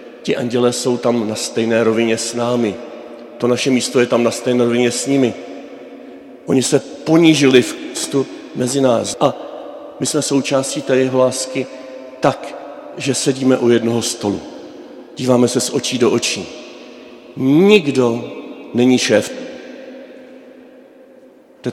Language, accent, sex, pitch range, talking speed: Czech, native, male, 115-130 Hz, 135 wpm